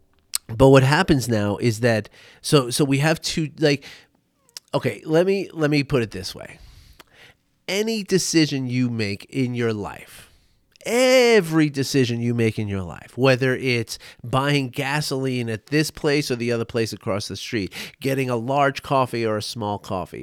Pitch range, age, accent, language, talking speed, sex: 115-160 Hz, 30-49, American, English, 170 wpm, male